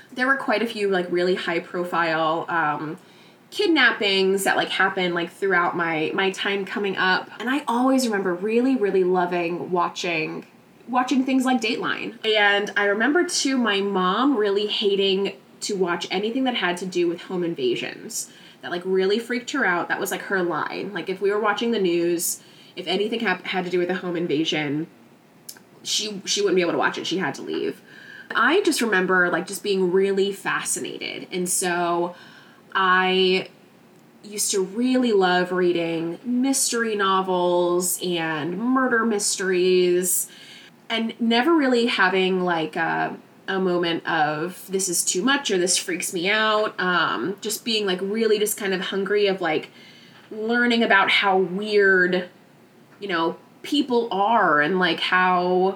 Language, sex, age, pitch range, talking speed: English, female, 20-39, 180-220 Hz, 165 wpm